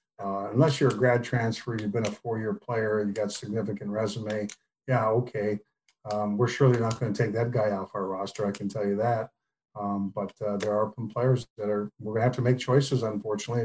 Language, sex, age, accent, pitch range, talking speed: English, male, 50-69, American, 110-130 Hz, 220 wpm